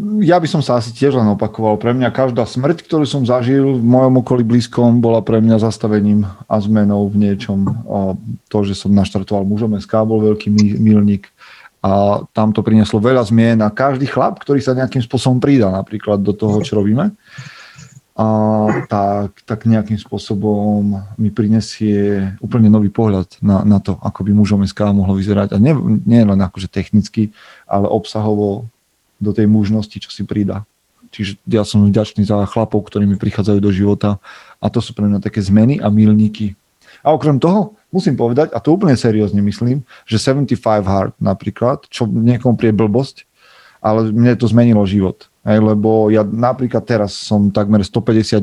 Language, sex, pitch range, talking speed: Slovak, male, 105-120 Hz, 170 wpm